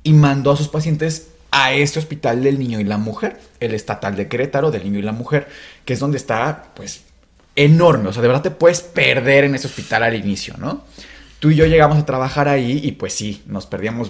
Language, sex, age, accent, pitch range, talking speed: Spanish, male, 20-39, Mexican, 115-150 Hz, 225 wpm